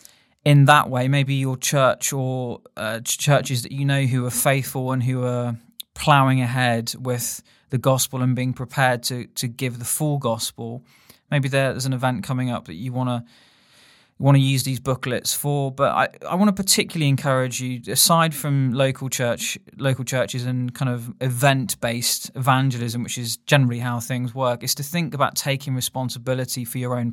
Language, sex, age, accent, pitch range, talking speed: English, male, 20-39, British, 120-135 Hz, 185 wpm